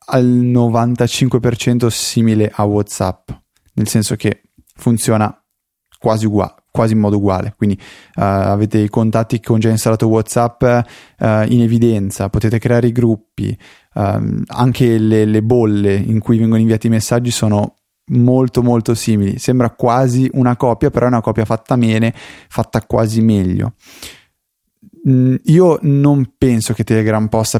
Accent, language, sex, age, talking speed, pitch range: native, Italian, male, 20-39, 135 wpm, 110-125 Hz